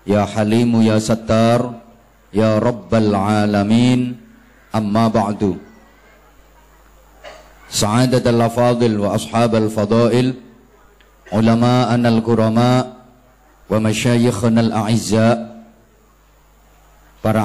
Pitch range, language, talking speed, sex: 110-125 Hz, Indonesian, 70 wpm, male